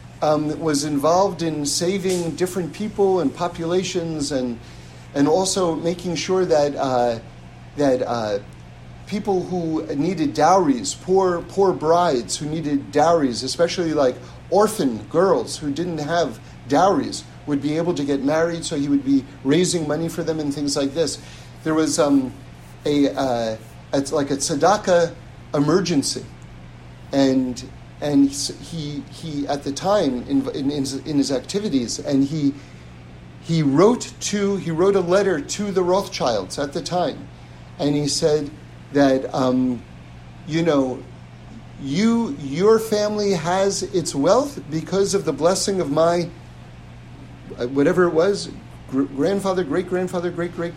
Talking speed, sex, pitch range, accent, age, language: 145 wpm, male, 135-180 Hz, American, 50-69, English